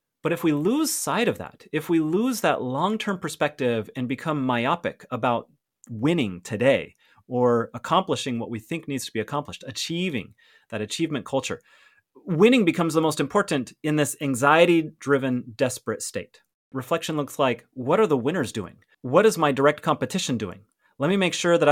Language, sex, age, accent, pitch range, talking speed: English, male, 30-49, American, 130-175 Hz, 170 wpm